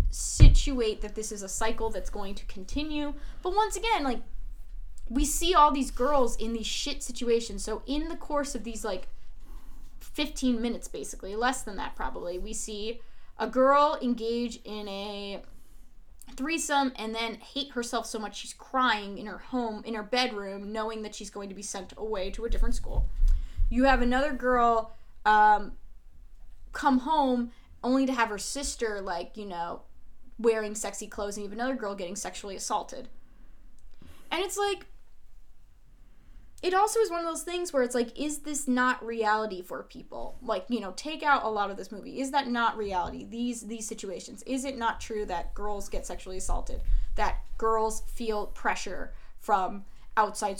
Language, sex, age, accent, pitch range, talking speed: English, female, 10-29, American, 205-255 Hz, 175 wpm